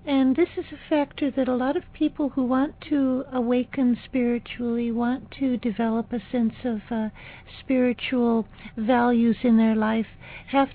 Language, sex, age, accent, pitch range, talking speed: English, female, 60-79, American, 225-260 Hz, 155 wpm